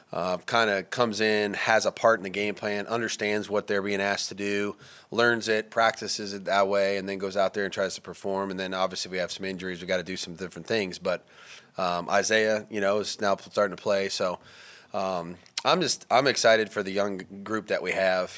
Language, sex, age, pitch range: English, male, 30-49, 95-105 Hz